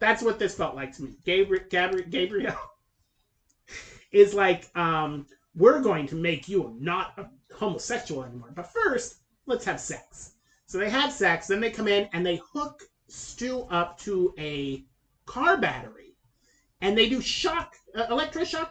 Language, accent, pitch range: English, American, 160-215 Hz